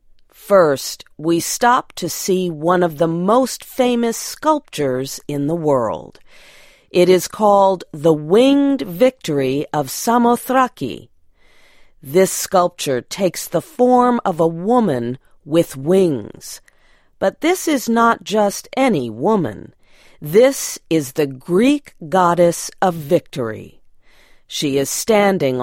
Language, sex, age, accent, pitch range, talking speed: English, female, 40-59, American, 155-225 Hz, 115 wpm